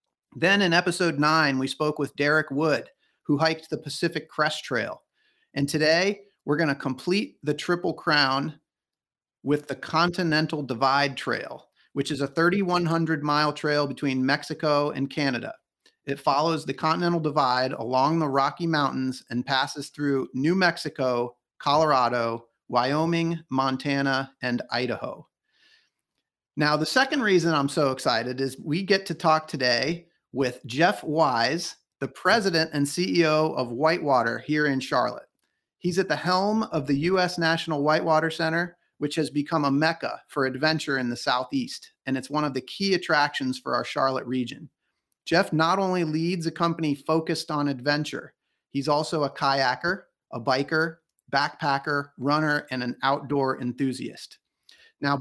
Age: 40-59